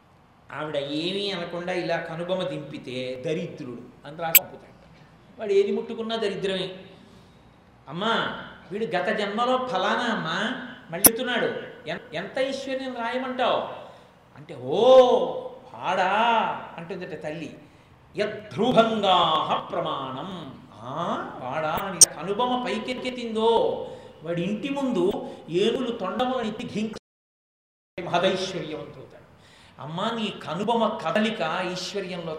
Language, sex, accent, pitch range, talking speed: Telugu, male, native, 165-220 Hz, 85 wpm